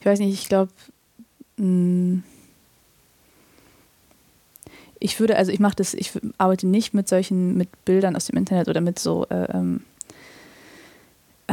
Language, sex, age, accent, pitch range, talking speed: German, female, 20-39, German, 175-195 Hz, 130 wpm